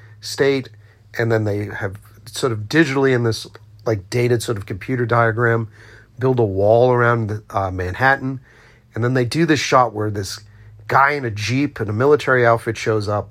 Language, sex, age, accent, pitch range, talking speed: English, male, 40-59, American, 105-130 Hz, 180 wpm